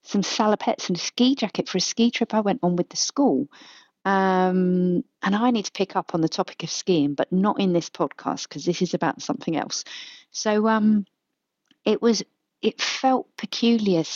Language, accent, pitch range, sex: English, British, 180-250 Hz, female